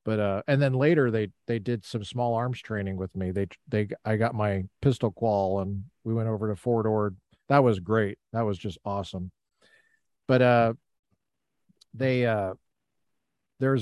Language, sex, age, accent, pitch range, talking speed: English, male, 50-69, American, 105-135 Hz, 175 wpm